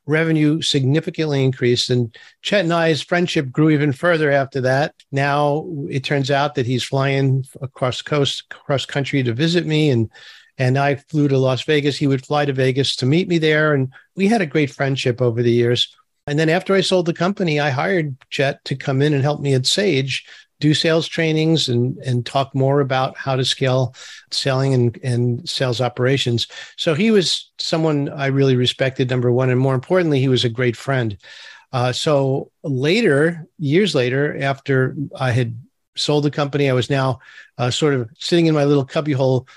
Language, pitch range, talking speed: English, 130-155 Hz, 190 wpm